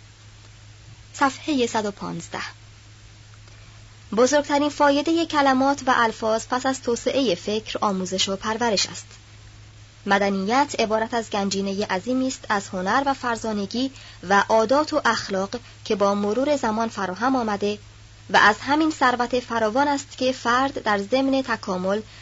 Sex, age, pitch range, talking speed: male, 30-49, 180-255 Hz, 125 wpm